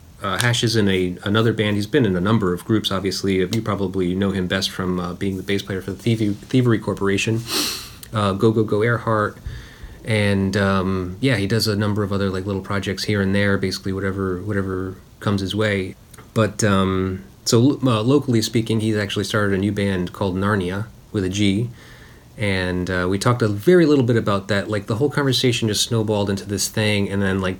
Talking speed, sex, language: 210 wpm, male, English